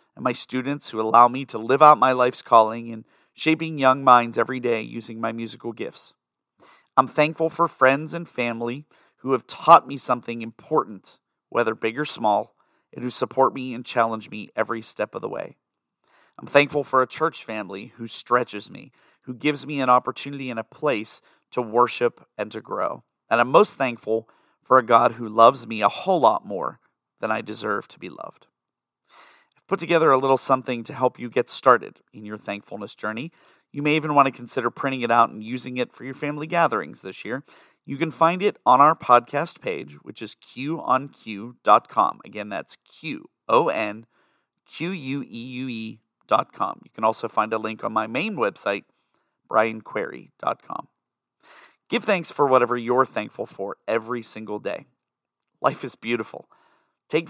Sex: male